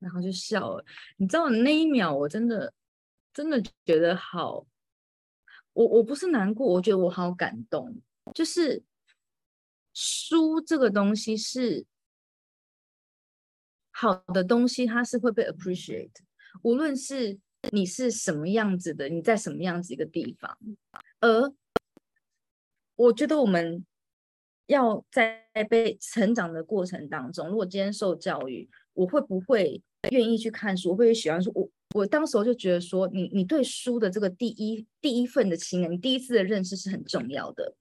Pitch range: 185-250 Hz